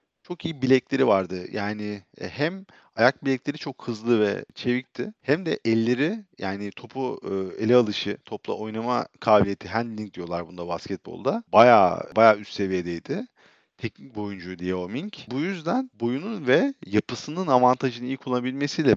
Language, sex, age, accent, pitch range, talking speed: Turkish, male, 40-59, native, 110-140 Hz, 135 wpm